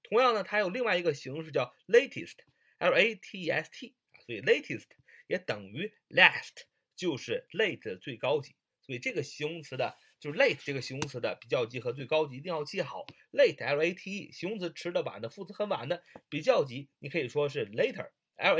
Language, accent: Chinese, native